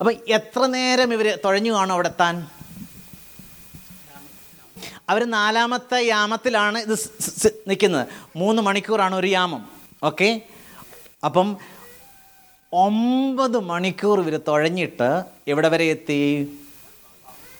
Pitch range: 155-225 Hz